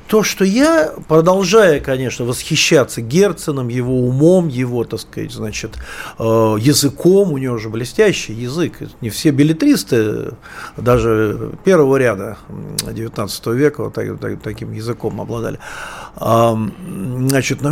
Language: Russian